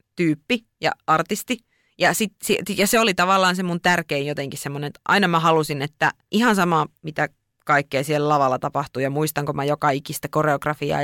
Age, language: 20-39, Finnish